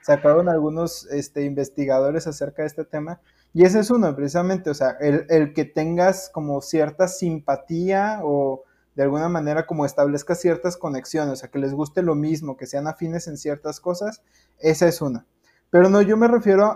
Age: 20-39